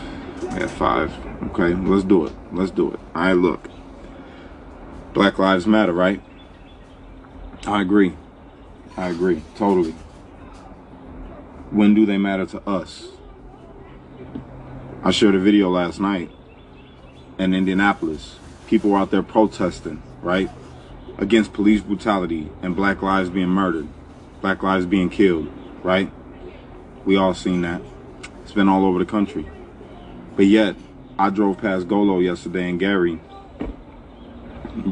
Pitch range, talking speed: 85-100 Hz, 125 wpm